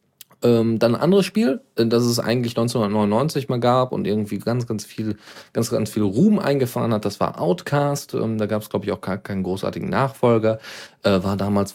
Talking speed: 180 wpm